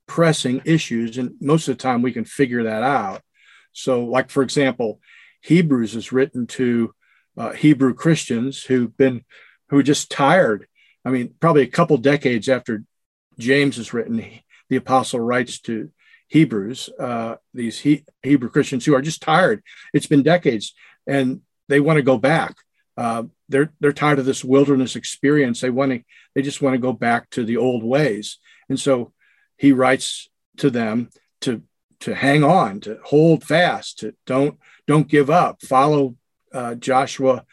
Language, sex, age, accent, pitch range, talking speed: English, male, 50-69, American, 120-145 Hz, 170 wpm